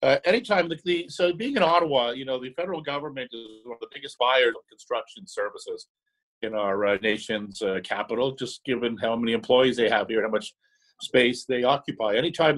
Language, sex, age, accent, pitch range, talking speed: English, male, 50-69, American, 120-170 Hz, 190 wpm